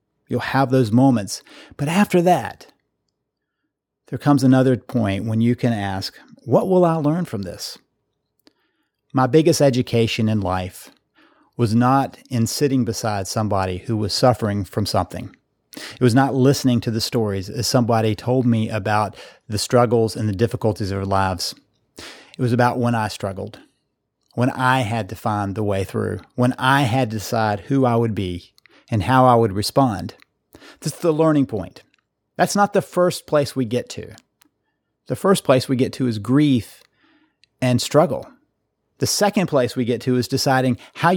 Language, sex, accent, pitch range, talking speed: English, male, American, 110-135 Hz, 170 wpm